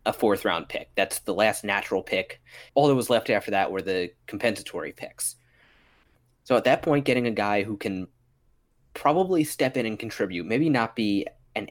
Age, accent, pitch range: 30-49, American, 95-130 Hz